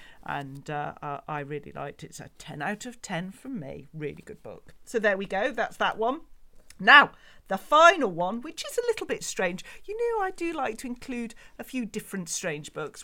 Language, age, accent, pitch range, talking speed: English, 40-59, British, 160-240 Hz, 210 wpm